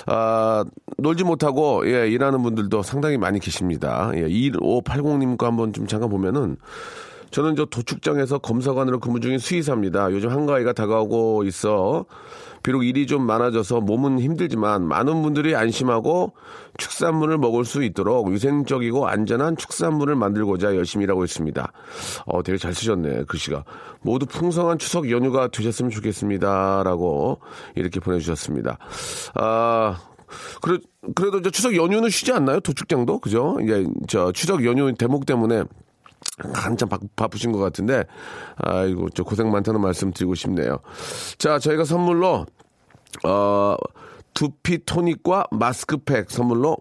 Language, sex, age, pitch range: Korean, male, 40-59, 100-145 Hz